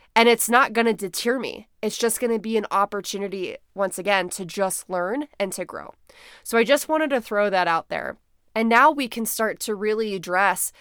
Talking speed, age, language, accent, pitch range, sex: 215 wpm, 20-39, English, American, 190-230 Hz, female